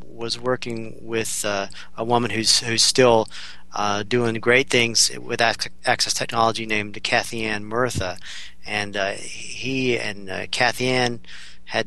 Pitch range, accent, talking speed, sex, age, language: 105-120 Hz, American, 140 wpm, male, 40-59, English